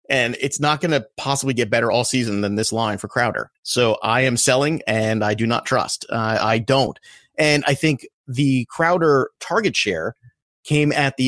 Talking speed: 195 wpm